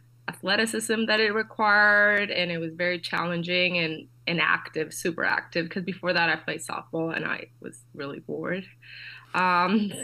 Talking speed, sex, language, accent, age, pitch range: 155 wpm, female, English, American, 20-39, 160-185 Hz